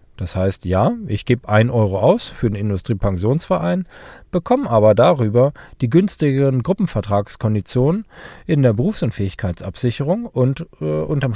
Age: 40-59